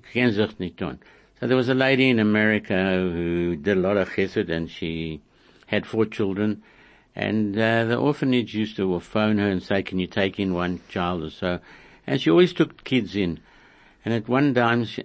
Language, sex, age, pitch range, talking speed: German, male, 60-79, 90-110 Hz, 185 wpm